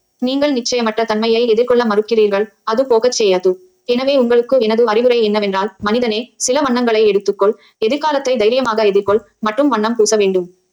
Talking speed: 135 wpm